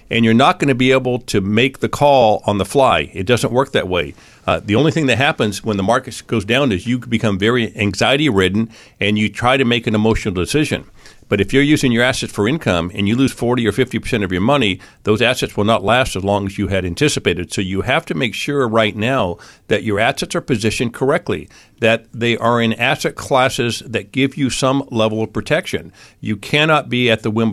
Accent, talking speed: American, 225 wpm